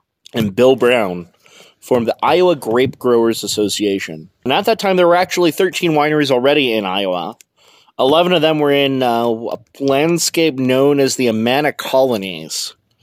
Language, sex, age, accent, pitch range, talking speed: English, male, 30-49, American, 110-140 Hz, 155 wpm